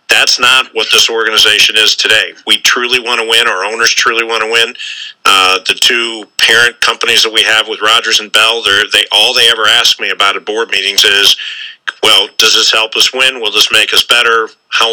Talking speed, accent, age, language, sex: 210 wpm, American, 50-69, English, male